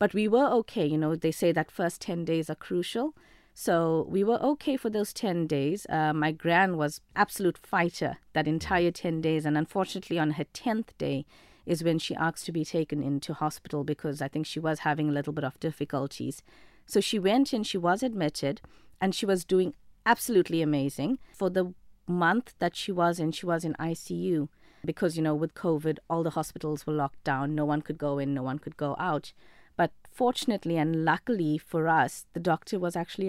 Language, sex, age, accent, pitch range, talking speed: English, female, 30-49, South African, 155-200 Hz, 200 wpm